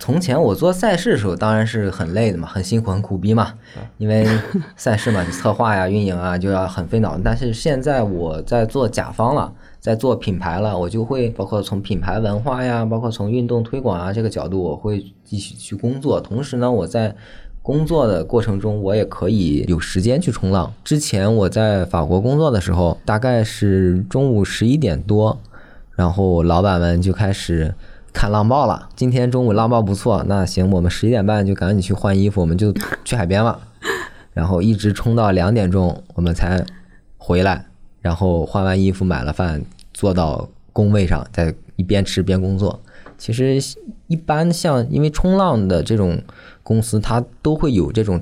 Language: Chinese